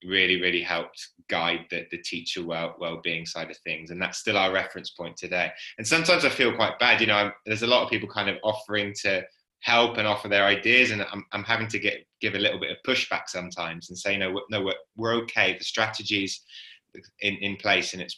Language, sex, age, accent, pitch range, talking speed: English, male, 20-39, British, 90-105 Hz, 230 wpm